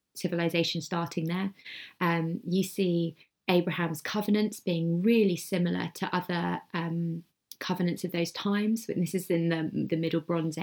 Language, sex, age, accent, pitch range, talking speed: English, female, 20-39, British, 150-175 Hz, 145 wpm